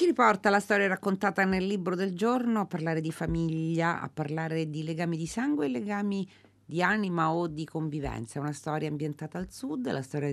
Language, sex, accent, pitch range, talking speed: Italian, female, native, 120-160 Hz, 200 wpm